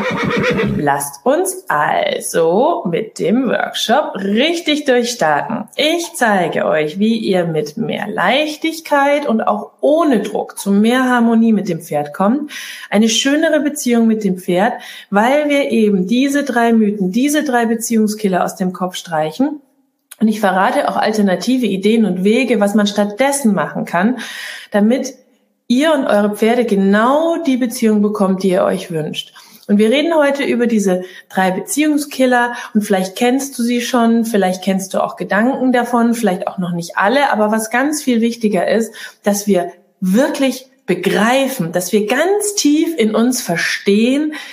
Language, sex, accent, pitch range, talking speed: German, female, German, 195-260 Hz, 155 wpm